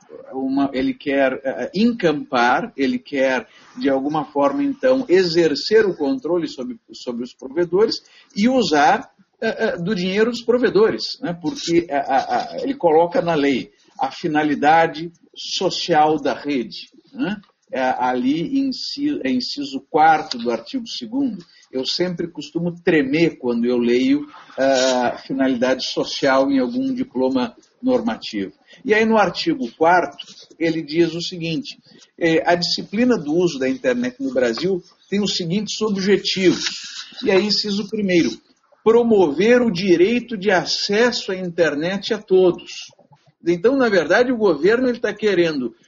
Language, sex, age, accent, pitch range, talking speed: Portuguese, male, 50-69, Brazilian, 145-235 Hz, 140 wpm